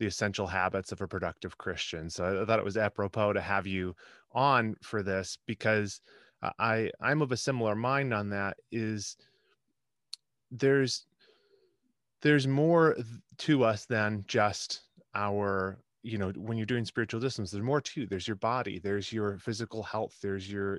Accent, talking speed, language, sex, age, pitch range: American, 160 wpm, English, male, 30-49, 100-125 Hz